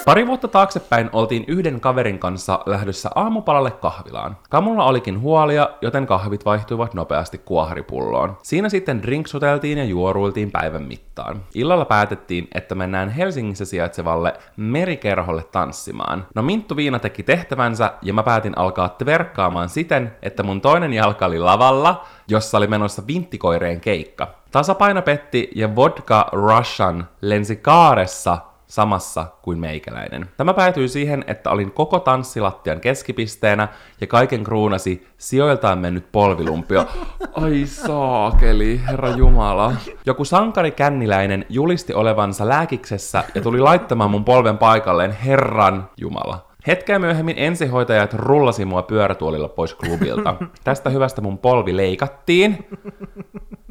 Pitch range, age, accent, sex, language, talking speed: 100-145 Hz, 20-39, native, male, Finnish, 125 wpm